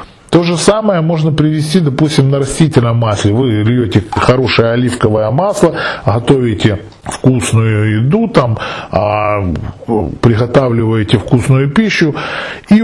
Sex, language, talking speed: male, Russian, 105 wpm